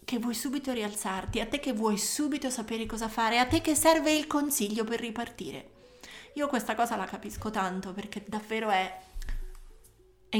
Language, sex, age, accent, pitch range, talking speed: Italian, female, 30-49, native, 195-235 Hz, 175 wpm